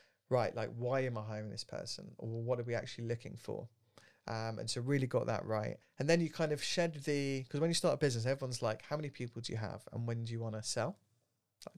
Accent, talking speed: British, 260 wpm